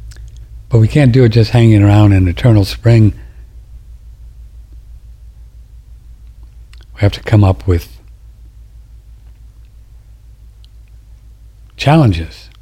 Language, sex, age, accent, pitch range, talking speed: English, male, 60-79, American, 95-110 Hz, 85 wpm